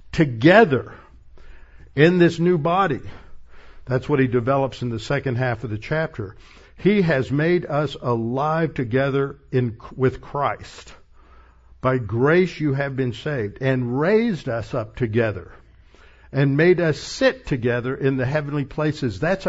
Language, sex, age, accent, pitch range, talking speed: English, male, 60-79, American, 115-155 Hz, 140 wpm